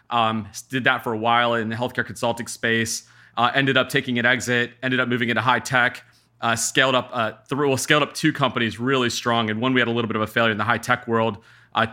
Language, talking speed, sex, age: English, 255 wpm, male, 30-49